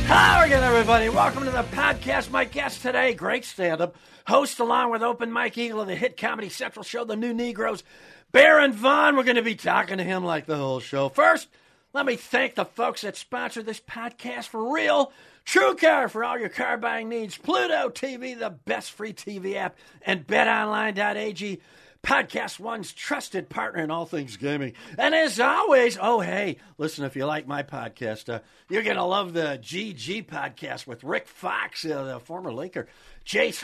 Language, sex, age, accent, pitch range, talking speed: English, male, 50-69, American, 180-260 Hz, 185 wpm